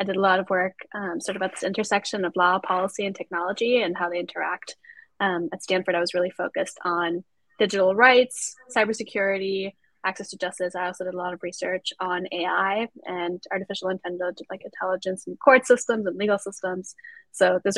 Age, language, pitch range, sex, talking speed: 10-29, English, 185-210 Hz, female, 190 wpm